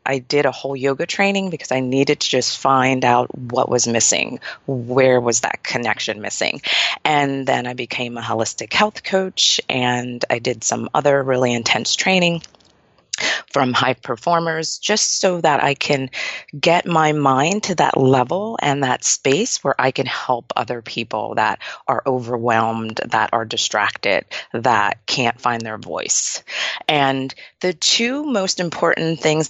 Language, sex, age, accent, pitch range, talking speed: English, female, 30-49, American, 125-170 Hz, 155 wpm